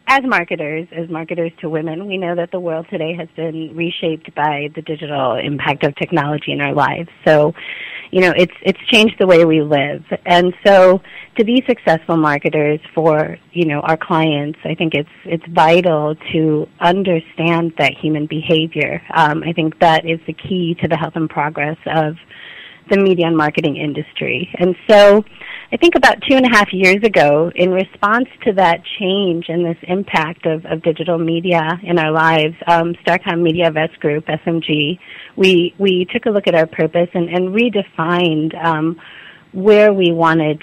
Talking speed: 175 wpm